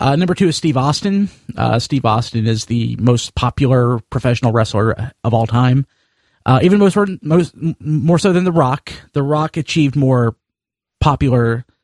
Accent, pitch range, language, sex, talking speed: American, 110-135 Hz, English, male, 150 wpm